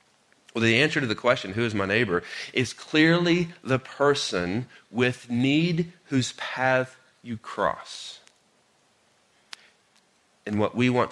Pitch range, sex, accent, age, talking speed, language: 105-135 Hz, male, American, 40-59, 130 wpm, English